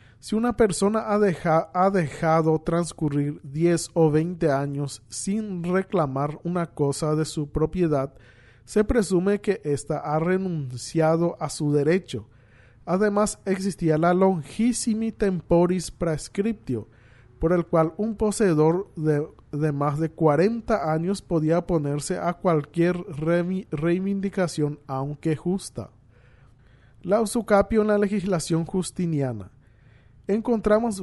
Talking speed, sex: 115 wpm, male